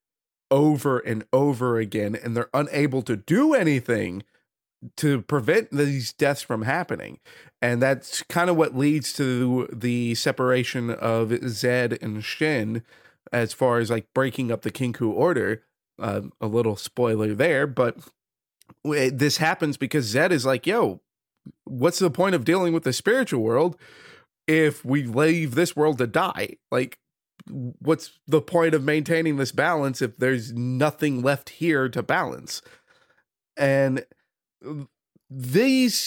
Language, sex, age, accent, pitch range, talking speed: English, male, 30-49, American, 125-160 Hz, 145 wpm